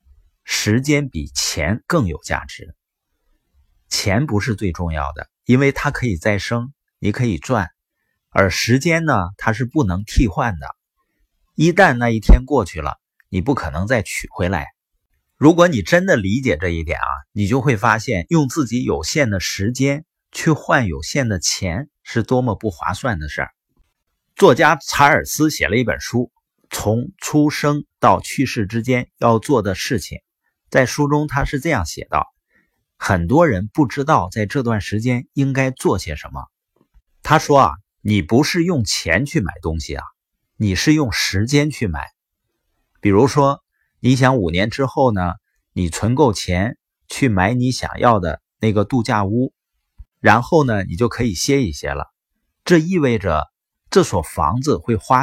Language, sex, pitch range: Chinese, male, 90-135 Hz